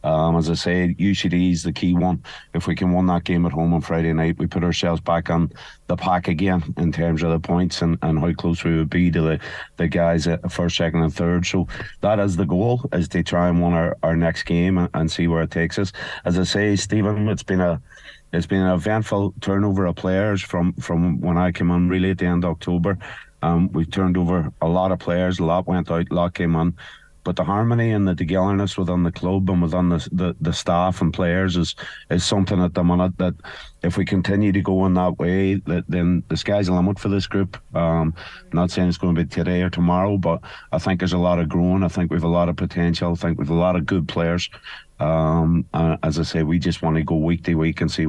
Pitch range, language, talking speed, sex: 85-95 Hz, English, 255 wpm, male